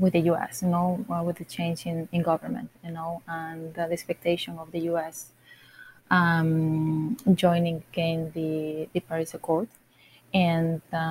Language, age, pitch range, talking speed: English, 20-39, 160-185 Hz, 155 wpm